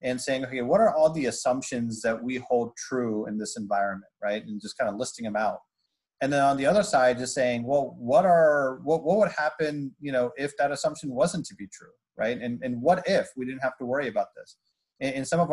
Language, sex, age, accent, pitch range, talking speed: English, male, 30-49, American, 115-140 Hz, 245 wpm